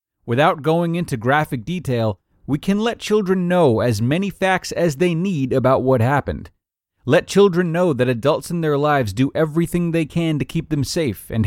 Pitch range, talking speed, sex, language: 105-170 Hz, 190 wpm, male, English